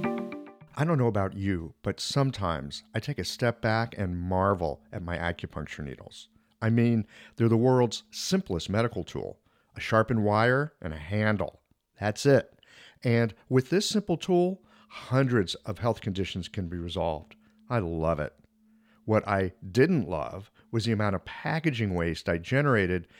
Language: English